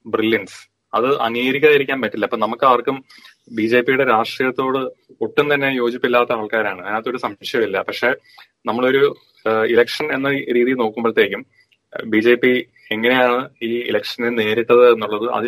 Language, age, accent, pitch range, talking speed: Malayalam, 30-49, native, 115-145 Hz, 125 wpm